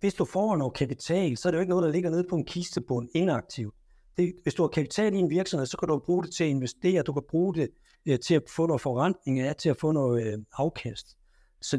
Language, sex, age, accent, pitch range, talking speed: Danish, male, 60-79, native, 125-165 Hz, 270 wpm